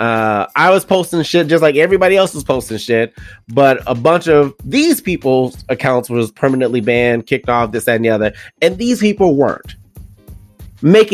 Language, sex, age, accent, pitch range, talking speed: English, male, 30-49, American, 125-185 Hz, 185 wpm